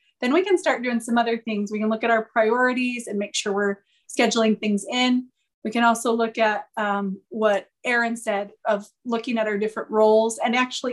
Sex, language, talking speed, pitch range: female, English, 210 wpm, 215-255 Hz